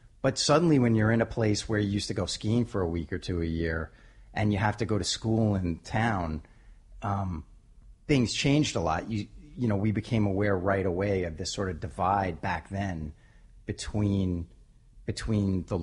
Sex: male